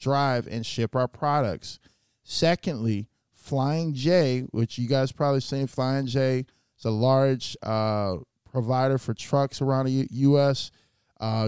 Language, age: English, 20-39